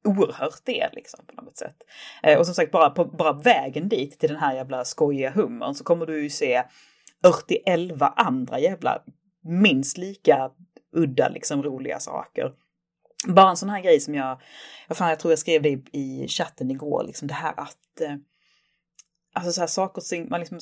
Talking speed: 185 wpm